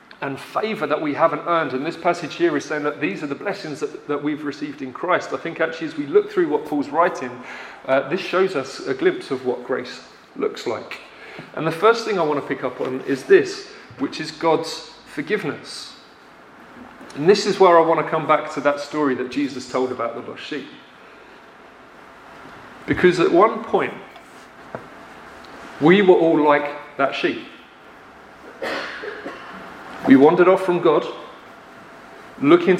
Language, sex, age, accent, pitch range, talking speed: English, male, 40-59, British, 145-180 Hz, 175 wpm